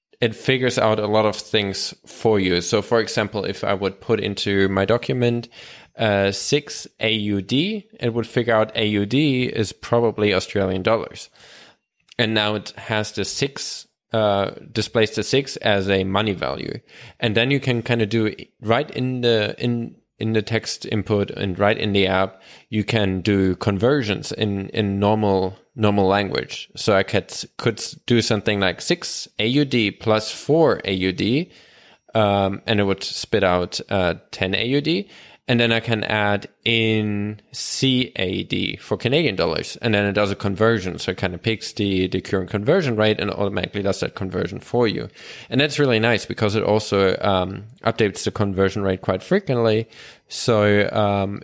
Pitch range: 100-115 Hz